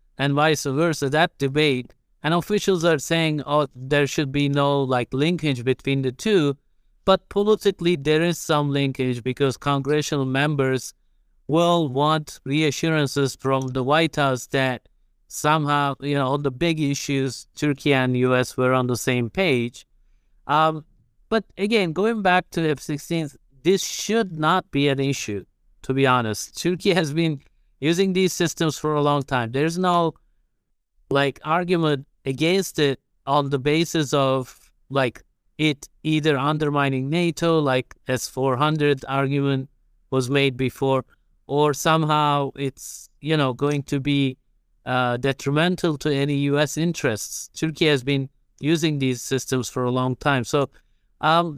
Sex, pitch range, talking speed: male, 135-160 Hz, 145 wpm